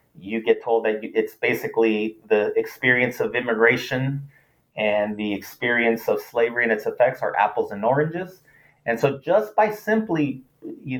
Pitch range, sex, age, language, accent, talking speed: 115-165 Hz, male, 30-49, English, American, 155 wpm